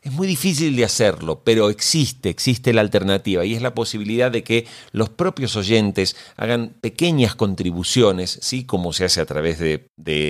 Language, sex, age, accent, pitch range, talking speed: Spanish, male, 40-59, Argentinian, 95-130 Hz, 175 wpm